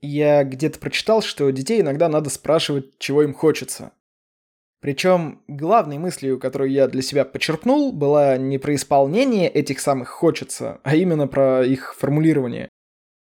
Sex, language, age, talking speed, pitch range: male, Russian, 20-39, 140 wpm, 135-180 Hz